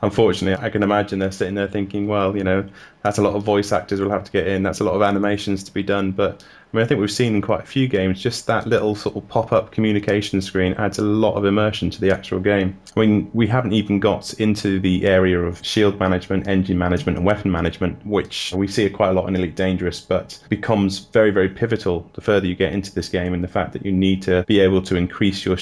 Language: English